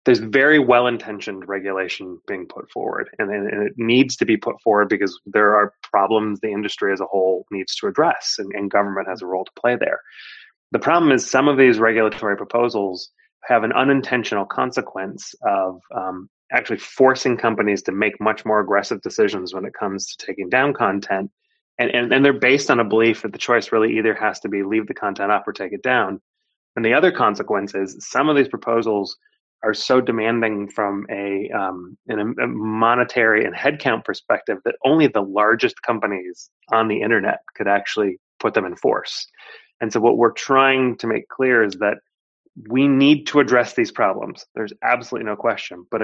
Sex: male